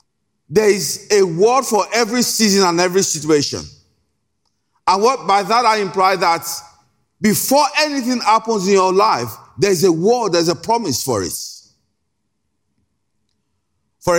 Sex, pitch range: male, 175-250 Hz